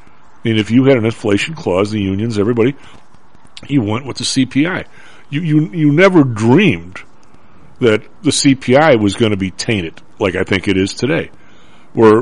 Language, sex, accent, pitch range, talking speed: English, male, American, 115-155 Hz, 175 wpm